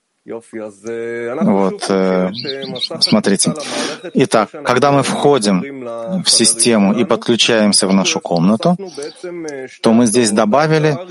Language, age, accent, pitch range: Russian, 30-49, native, 110-140 Hz